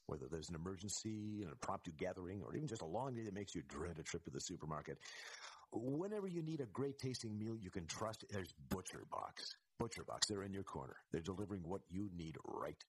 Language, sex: English, male